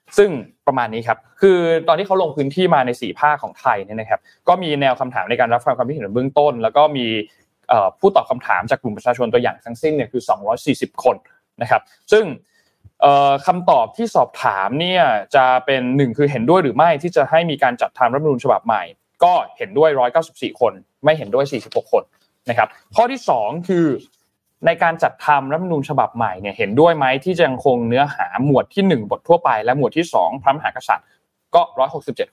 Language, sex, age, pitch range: Thai, male, 20-39, 130-175 Hz